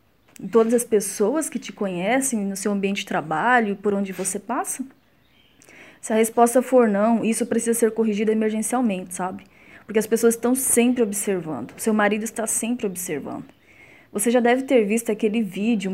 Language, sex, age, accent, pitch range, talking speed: Portuguese, female, 20-39, Brazilian, 205-240 Hz, 170 wpm